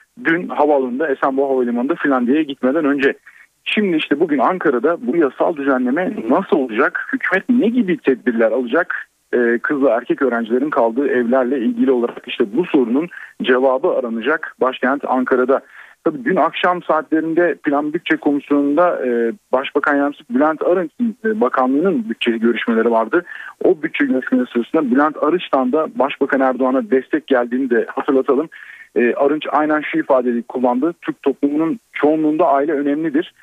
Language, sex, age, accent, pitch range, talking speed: Turkish, male, 40-59, native, 130-175 Hz, 135 wpm